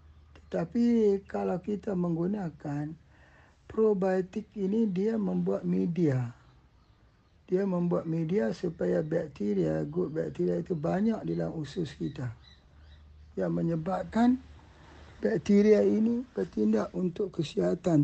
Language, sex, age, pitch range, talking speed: Malay, male, 60-79, 140-190 Hz, 95 wpm